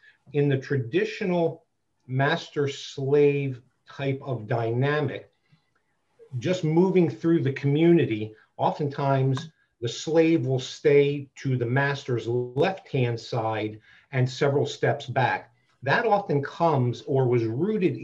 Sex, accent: male, American